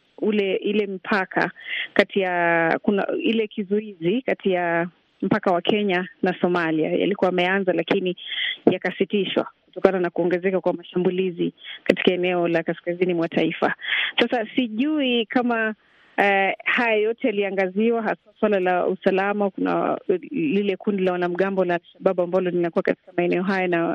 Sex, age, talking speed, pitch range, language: female, 30-49, 135 wpm, 180-210 Hz, Swahili